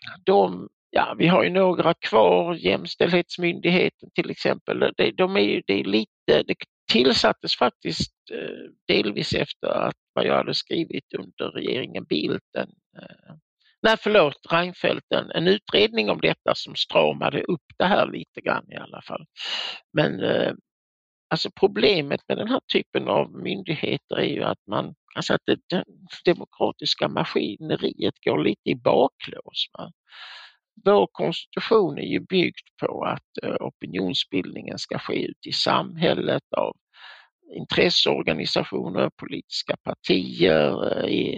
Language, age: Swedish, 60-79